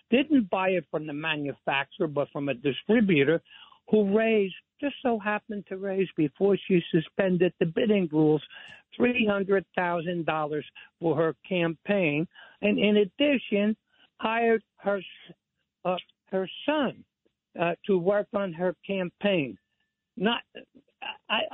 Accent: American